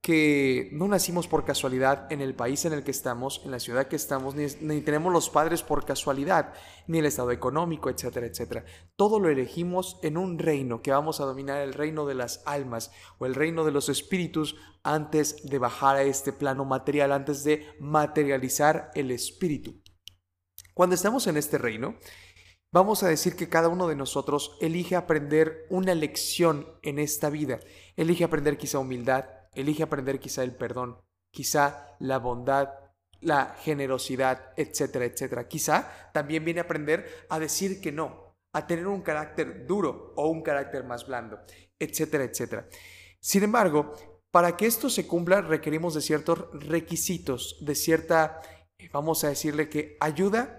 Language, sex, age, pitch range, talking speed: Spanish, male, 30-49, 135-165 Hz, 165 wpm